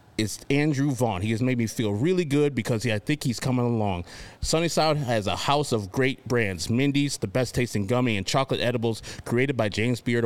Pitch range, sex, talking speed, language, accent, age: 110-140 Hz, male, 215 wpm, English, American, 30-49